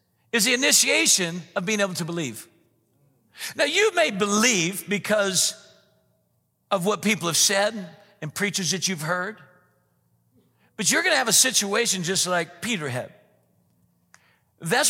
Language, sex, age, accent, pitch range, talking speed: English, male, 50-69, American, 150-235 Hz, 135 wpm